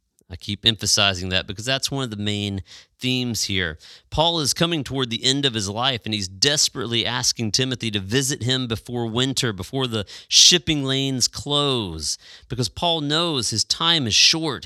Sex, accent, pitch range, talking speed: male, American, 100-130 Hz, 175 wpm